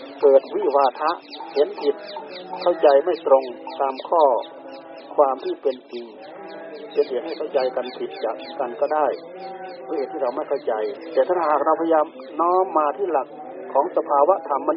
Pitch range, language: 150-190 Hz, Thai